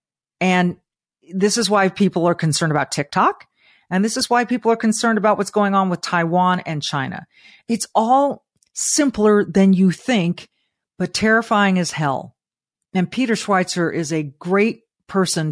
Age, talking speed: 40-59, 160 wpm